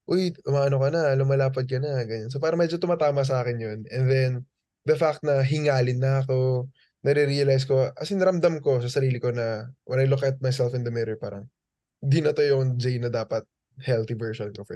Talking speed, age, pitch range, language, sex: 215 wpm, 20-39, 120-145 Hz, Filipino, male